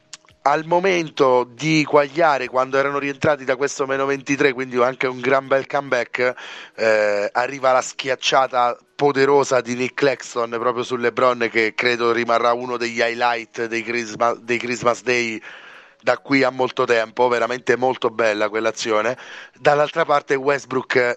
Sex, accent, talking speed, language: male, native, 145 wpm, Italian